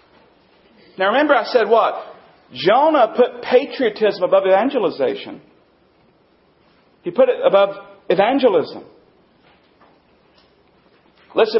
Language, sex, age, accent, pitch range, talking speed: English, male, 40-59, American, 215-330 Hz, 85 wpm